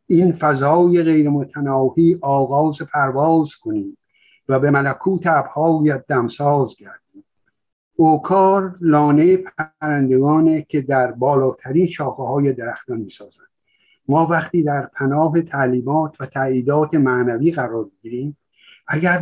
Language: Persian